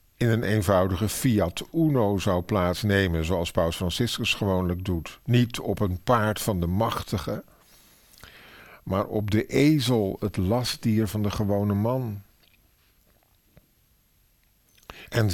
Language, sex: Dutch, male